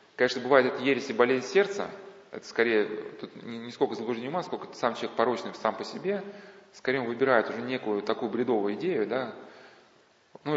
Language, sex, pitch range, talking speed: Russian, male, 120-155 Hz, 170 wpm